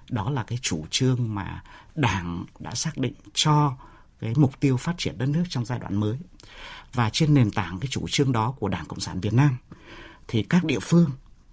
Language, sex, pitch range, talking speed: Vietnamese, male, 110-150 Hz, 210 wpm